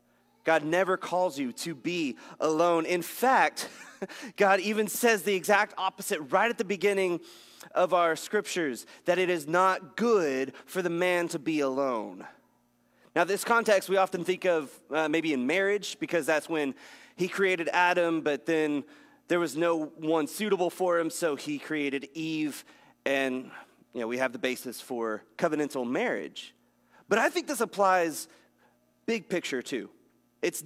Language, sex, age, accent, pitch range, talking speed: English, male, 30-49, American, 145-200 Hz, 160 wpm